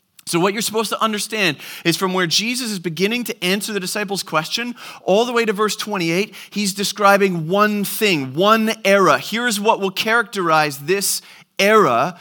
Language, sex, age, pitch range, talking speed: English, male, 30-49, 170-220 Hz, 170 wpm